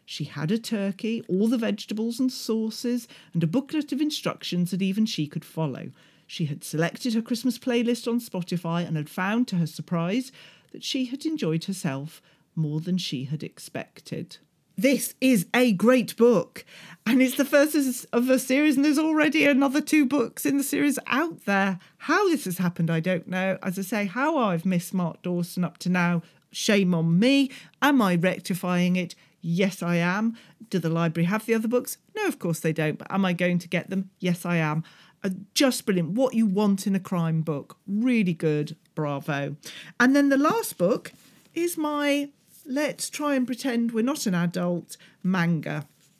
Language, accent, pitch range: English, British, 175-255 Hz